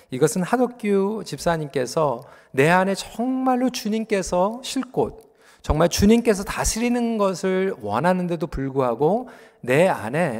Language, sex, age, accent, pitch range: Korean, male, 40-59, native, 125-200 Hz